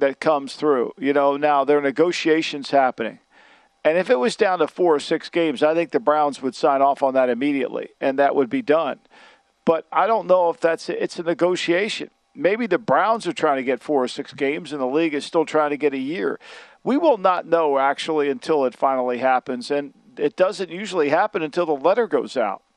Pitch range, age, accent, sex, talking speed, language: 145-185 Hz, 50-69, American, male, 220 wpm, English